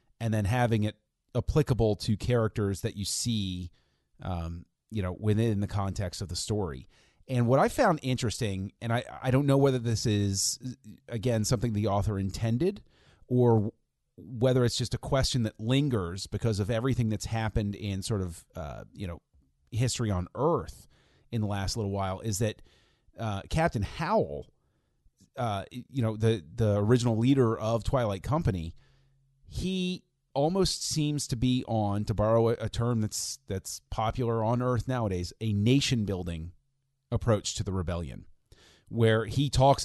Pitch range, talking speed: 100-125 Hz, 160 wpm